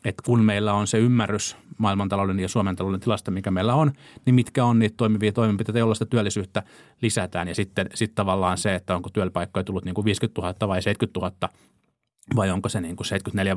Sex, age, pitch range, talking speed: male, 30-49, 90-110 Hz, 195 wpm